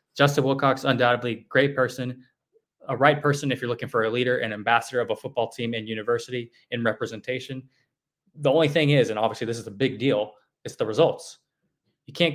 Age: 20-39